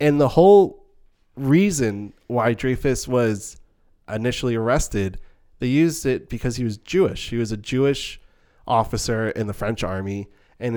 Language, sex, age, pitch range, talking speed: English, male, 20-39, 105-145 Hz, 145 wpm